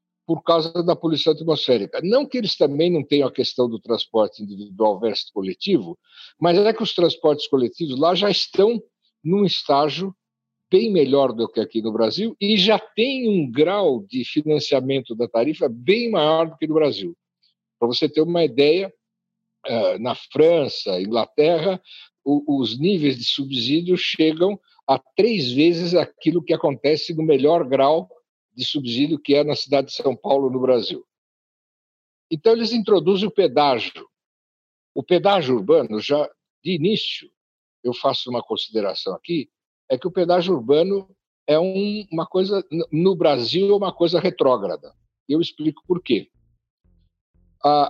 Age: 60-79